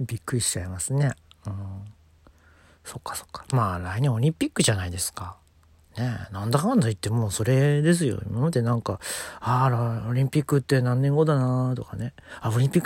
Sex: male